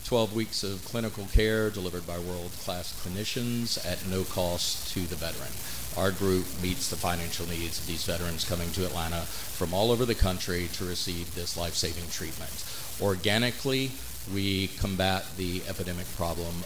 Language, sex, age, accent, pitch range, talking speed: English, male, 50-69, American, 85-95 Hz, 155 wpm